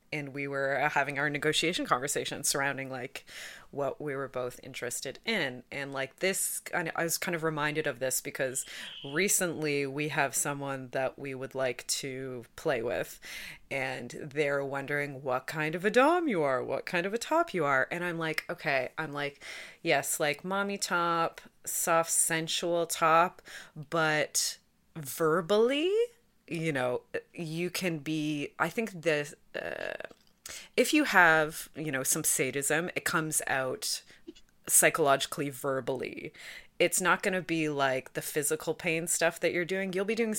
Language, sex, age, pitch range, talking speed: English, female, 30-49, 145-190 Hz, 155 wpm